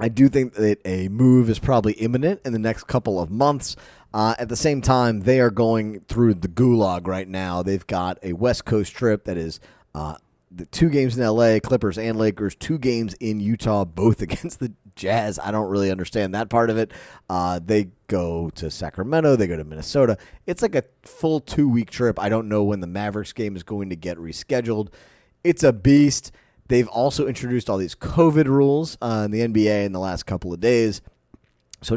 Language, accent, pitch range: English, American, 100-125 Hz